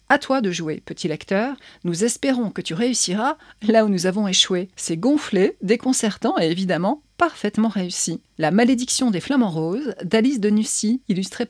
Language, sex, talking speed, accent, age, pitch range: French, female, 165 wpm, French, 40-59, 190-240 Hz